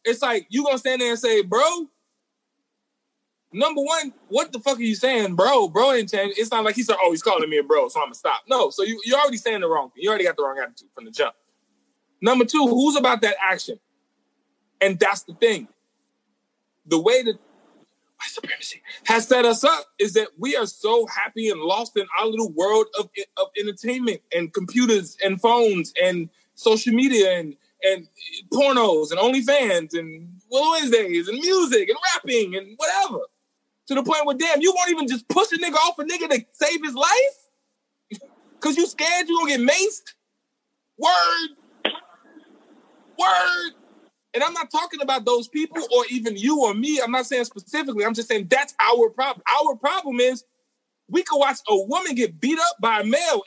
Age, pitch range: 20-39, 230-340 Hz